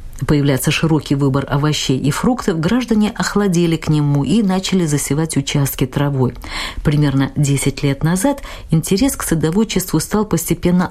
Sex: female